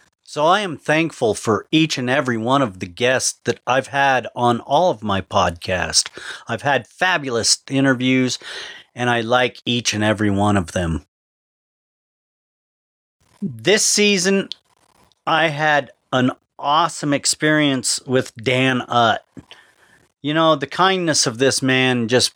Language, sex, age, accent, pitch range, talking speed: English, male, 40-59, American, 115-150 Hz, 135 wpm